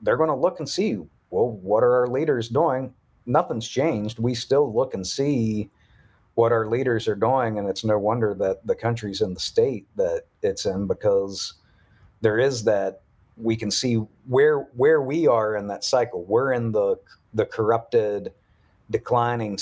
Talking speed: 175 wpm